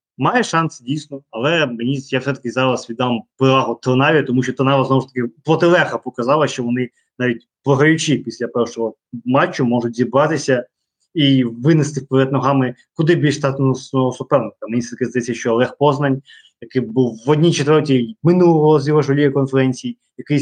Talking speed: 155 wpm